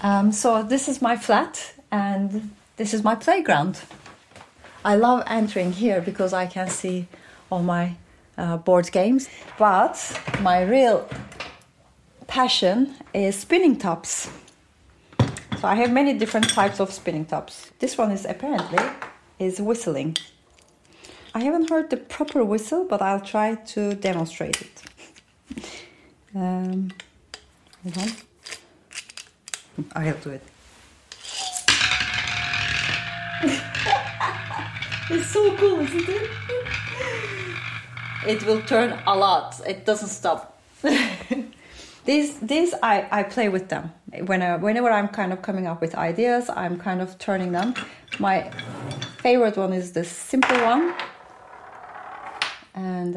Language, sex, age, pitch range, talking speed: English, female, 40-59, 185-255 Hz, 120 wpm